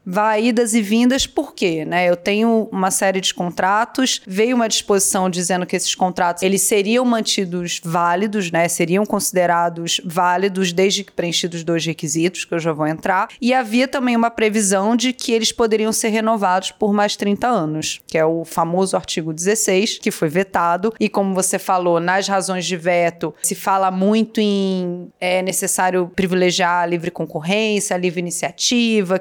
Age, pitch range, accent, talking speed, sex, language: 30-49, 175-210 Hz, Brazilian, 170 wpm, female, Portuguese